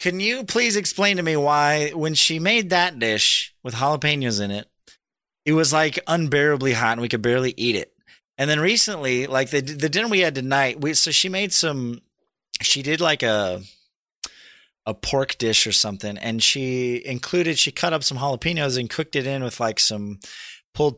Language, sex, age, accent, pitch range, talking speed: English, male, 30-49, American, 115-155 Hz, 190 wpm